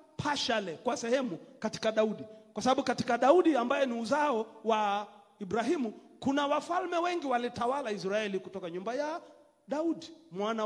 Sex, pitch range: male, 175-265 Hz